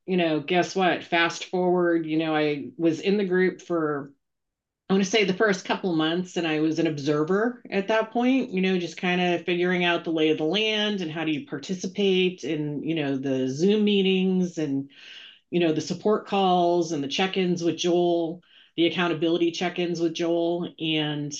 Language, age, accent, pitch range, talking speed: English, 30-49, American, 150-185 Hz, 195 wpm